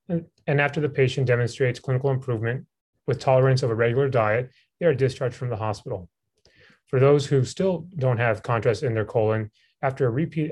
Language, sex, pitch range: English, male, 115-140 Hz